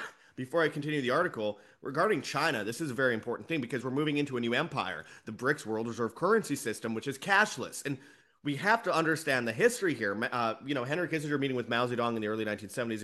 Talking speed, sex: 230 wpm, male